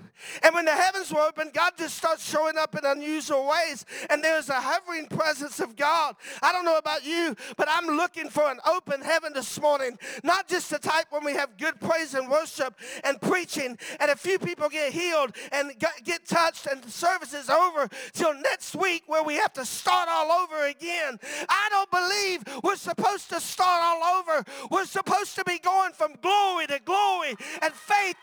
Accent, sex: American, male